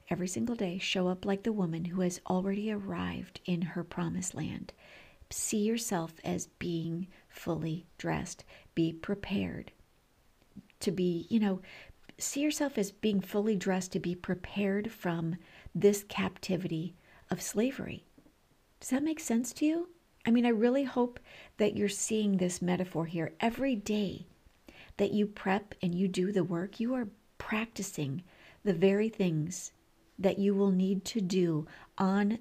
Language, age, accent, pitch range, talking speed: English, 50-69, American, 175-210 Hz, 150 wpm